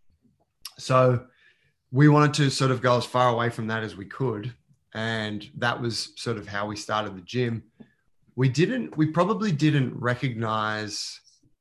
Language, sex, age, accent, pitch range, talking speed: English, male, 20-39, Australian, 105-125 Hz, 160 wpm